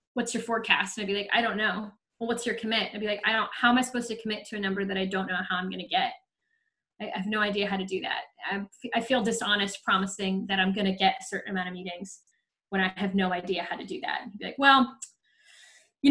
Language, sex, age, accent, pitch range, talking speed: English, female, 20-39, American, 205-280 Hz, 290 wpm